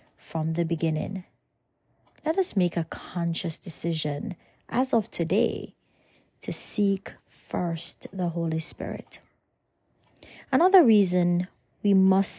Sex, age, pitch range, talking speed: female, 30-49, 170-220 Hz, 105 wpm